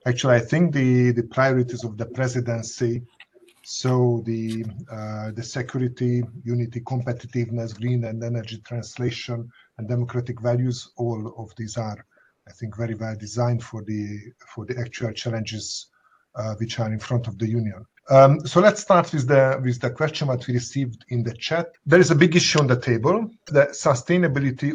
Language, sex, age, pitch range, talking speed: Hungarian, male, 50-69, 115-140 Hz, 170 wpm